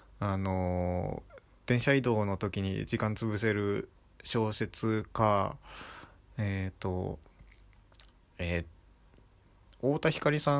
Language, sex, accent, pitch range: Japanese, male, native, 95-120 Hz